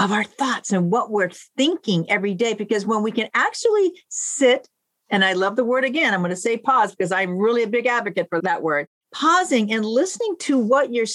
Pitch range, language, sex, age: 200-275 Hz, English, female, 50-69